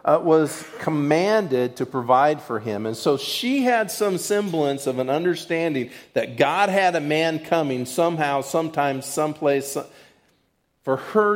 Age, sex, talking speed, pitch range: 50-69, male, 145 wpm, 150-205 Hz